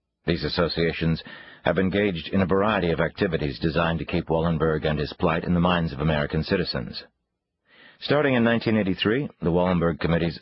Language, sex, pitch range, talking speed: English, male, 75-95 Hz, 160 wpm